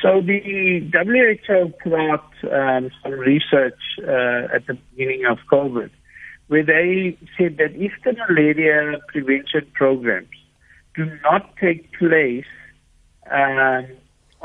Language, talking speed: English, 115 wpm